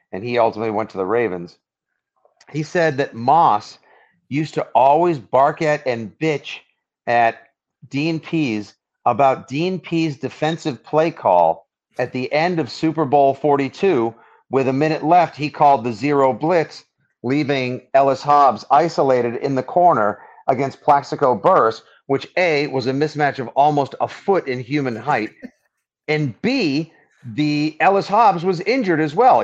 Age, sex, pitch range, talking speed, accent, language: 40-59, male, 130-180 Hz, 155 wpm, American, English